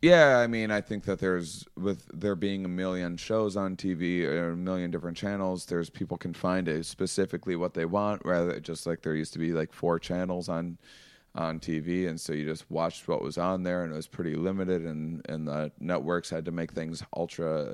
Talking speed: 220 wpm